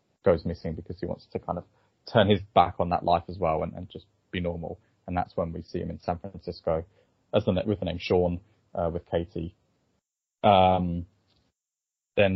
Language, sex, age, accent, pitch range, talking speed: English, male, 20-39, British, 85-100 Hz, 190 wpm